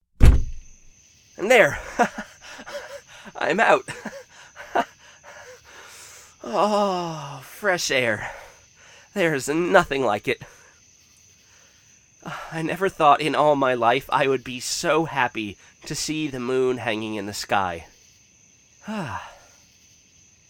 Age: 20-39